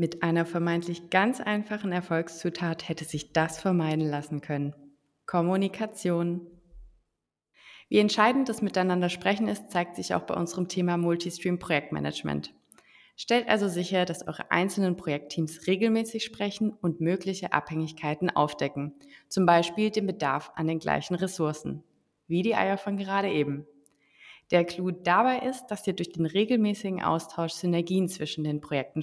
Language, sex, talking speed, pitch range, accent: German, female, 140 wpm, 155-195 Hz, German